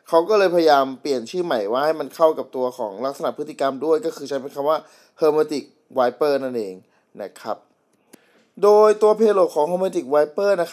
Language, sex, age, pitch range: Thai, male, 20-39, 130-165 Hz